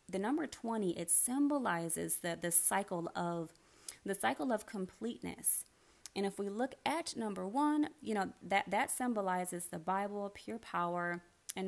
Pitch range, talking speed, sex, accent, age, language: 175-220 Hz, 155 wpm, female, American, 20-39, English